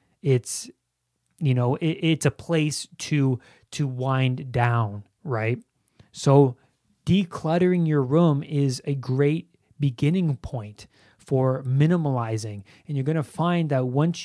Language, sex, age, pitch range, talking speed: English, male, 30-49, 130-155 Hz, 125 wpm